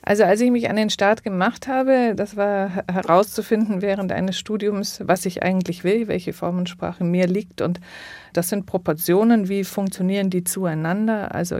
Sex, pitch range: female, 175-200 Hz